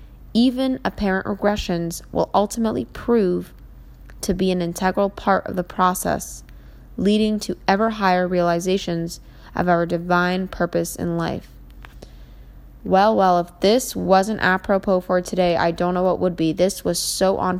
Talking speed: 145 wpm